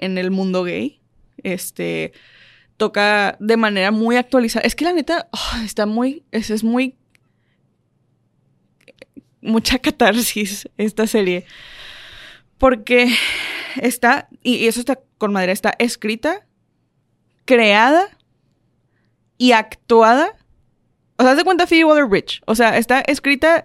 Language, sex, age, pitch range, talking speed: Spanish, female, 20-39, 205-245 Hz, 115 wpm